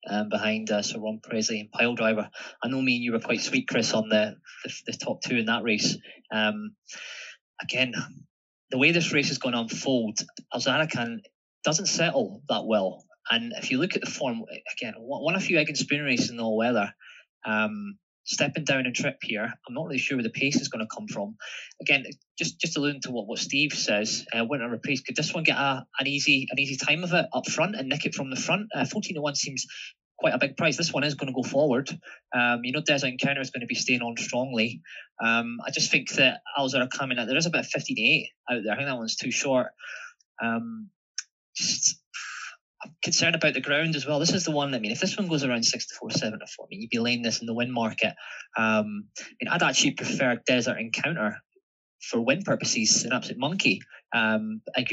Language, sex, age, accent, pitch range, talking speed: English, male, 20-39, British, 115-150 Hz, 225 wpm